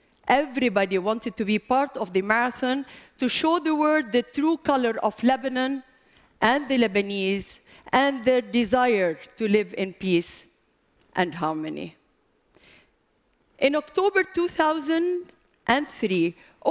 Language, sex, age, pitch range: Chinese, female, 50-69, 195-290 Hz